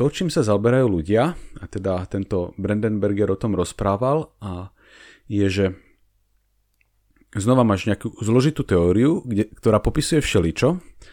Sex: male